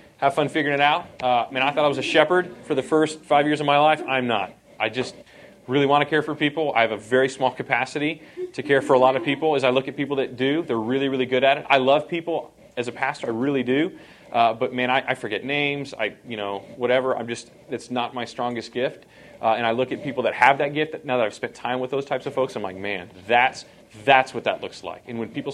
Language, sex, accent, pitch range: English, male, American, 120-145 Hz